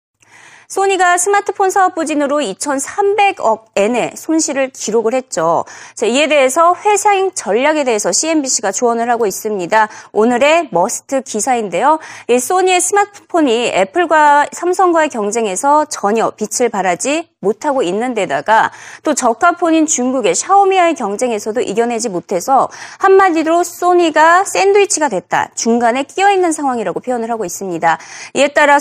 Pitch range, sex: 230-335 Hz, female